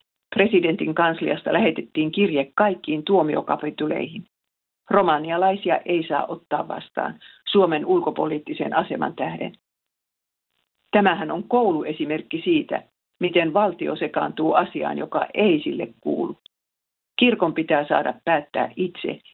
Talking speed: 100 wpm